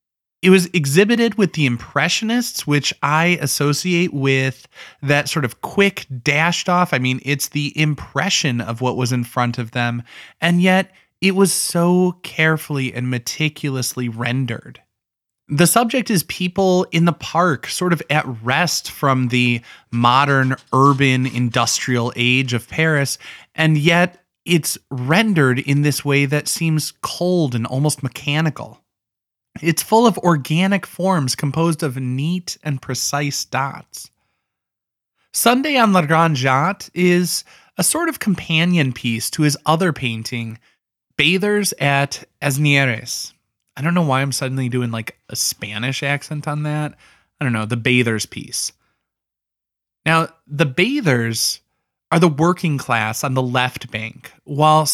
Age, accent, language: 20-39, American, English